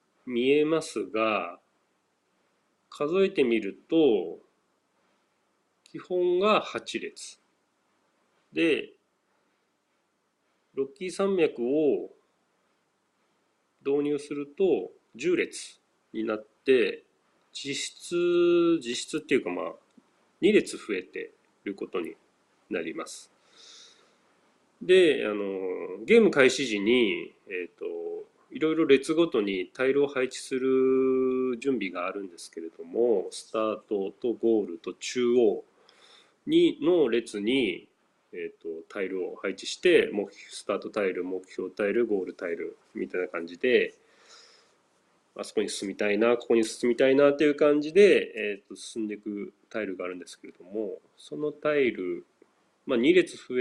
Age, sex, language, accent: 40-59, male, Japanese, native